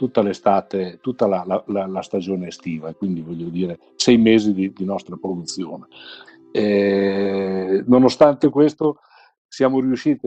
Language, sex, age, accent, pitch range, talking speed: Italian, male, 50-69, native, 95-120 Hz, 130 wpm